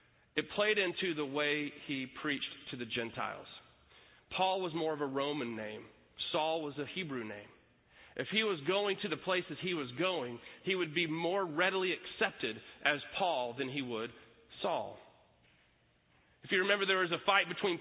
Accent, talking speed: American, 175 wpm